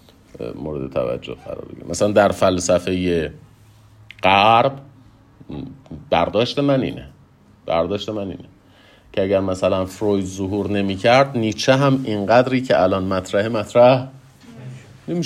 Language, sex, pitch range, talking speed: Persian, male, 85-120 Hz, 110 wpm